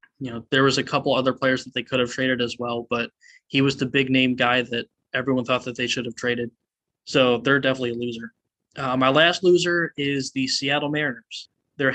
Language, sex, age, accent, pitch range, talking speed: English, male, 20-39, American, 125-135 Hz, 220 wpm